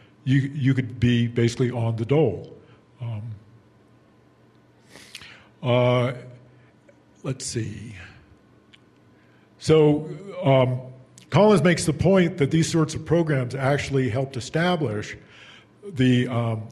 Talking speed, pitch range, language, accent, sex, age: 100 wpm, 110-130 Hz, English, American, male, 50-69